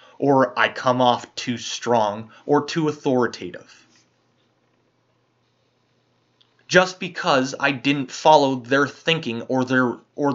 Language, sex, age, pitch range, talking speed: English, male, 20-39, 125-155 Hz, 110 wpm